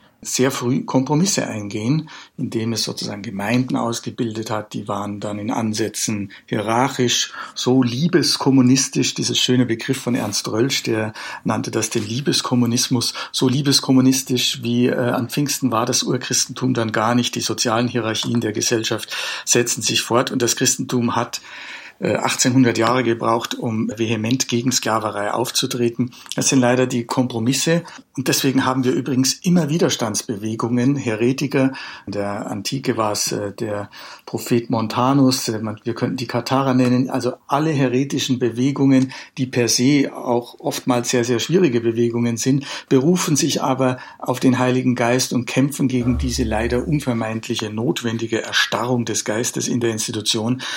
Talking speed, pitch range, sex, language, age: 145 wpm, 115-130 Hz, male, German, 60-79